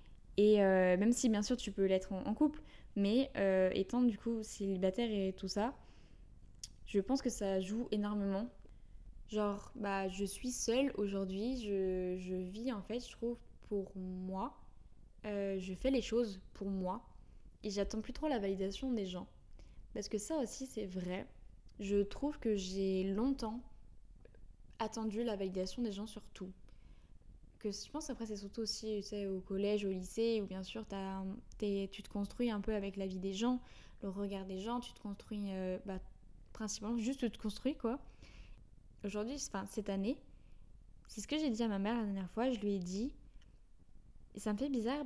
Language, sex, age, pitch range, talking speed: French, female, 10-29, 195-235 Hz, 190 wpm